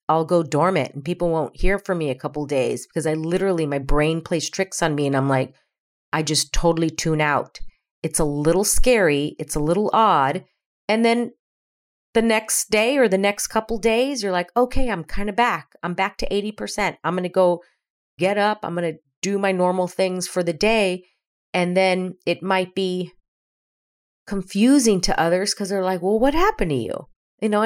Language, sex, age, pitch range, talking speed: English, female, 40-59, 150-200 Hz, 205 wpm